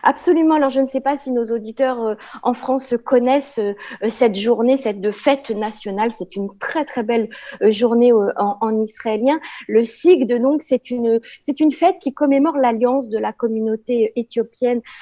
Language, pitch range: Italian, 215-265 Hz